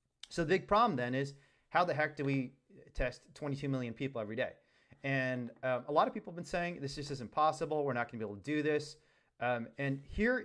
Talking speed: 235 wpm